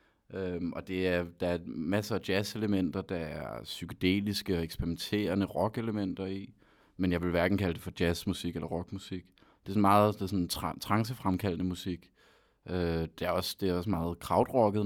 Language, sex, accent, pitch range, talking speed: Danish, male, native, 90-105 Hz, 165 wpm